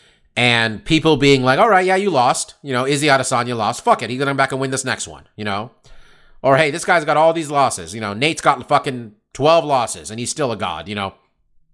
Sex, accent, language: male, American, English